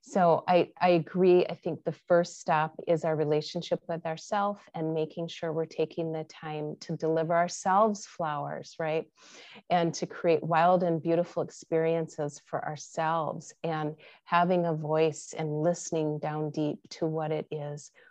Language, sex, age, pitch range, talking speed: English, female, 30-49, 160-190 Hz, 155 wpm